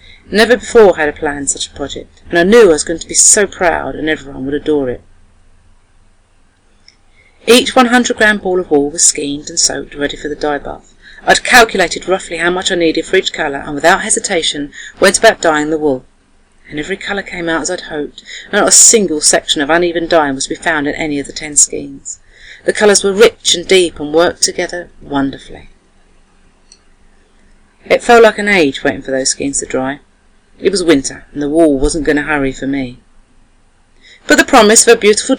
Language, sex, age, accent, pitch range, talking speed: English, female, 40-59, British, 145-200 Hz, 205 wpm